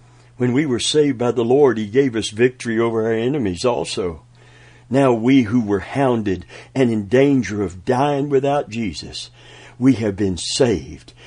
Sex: male